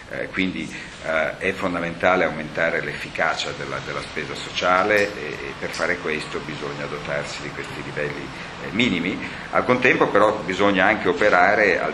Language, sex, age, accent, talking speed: Italian, male, 50-69, native, 150 wpm